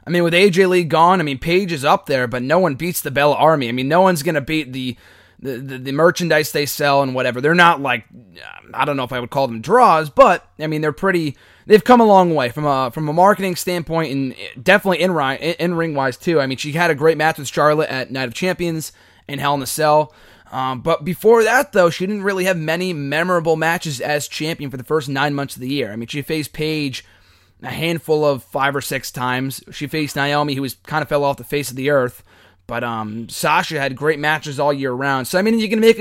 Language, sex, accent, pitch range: English, male, American, 135-170 Hz